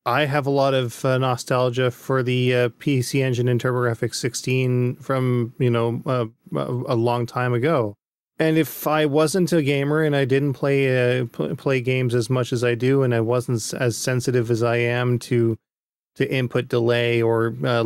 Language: English